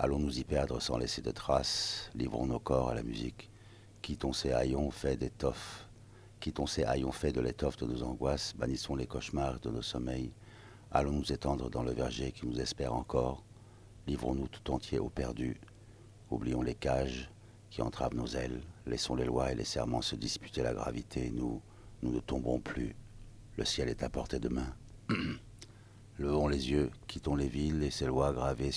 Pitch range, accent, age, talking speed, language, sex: 65-105 Hz, French, 60-79, 180 wpm, French, male